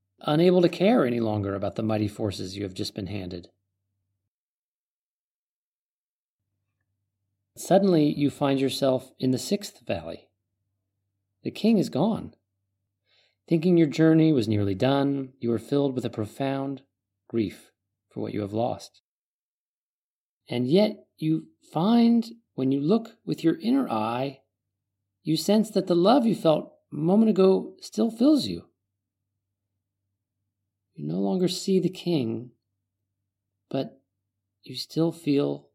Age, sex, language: 40-59, male, English